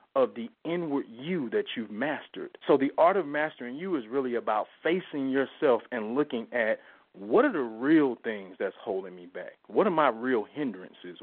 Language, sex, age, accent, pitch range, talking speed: English, male, 40-59, American, 120-160 Hz, 185 wpm